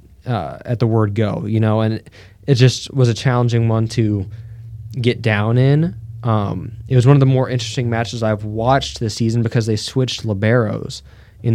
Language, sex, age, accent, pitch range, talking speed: English, male, 20-39, American, 105-125 Hz, 185 wpm